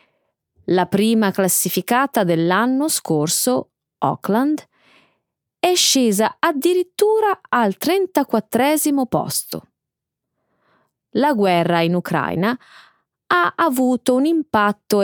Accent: native